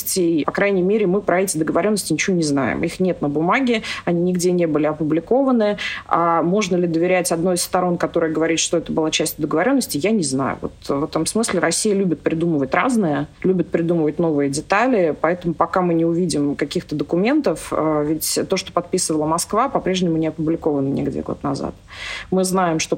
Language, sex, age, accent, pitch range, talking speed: Russian, female, 30-49, native, 160-195 Hz, 180 wpm